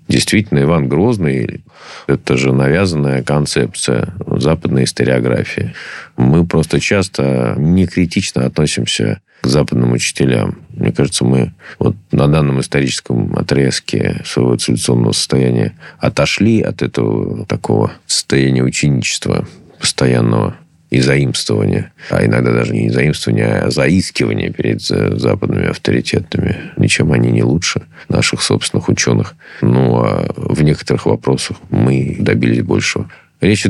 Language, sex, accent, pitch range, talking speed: Russian, male, native, 65-80 Hz, 115 wpm